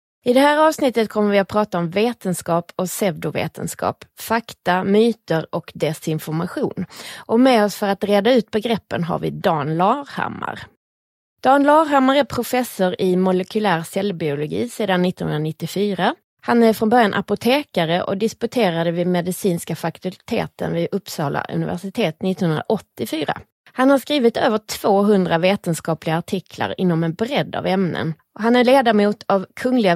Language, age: Swedish, 20-39